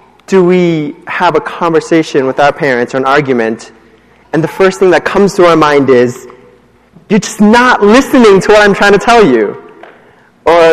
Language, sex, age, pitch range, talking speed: English, male, 20-39, 155-210 Hz, 185 wpm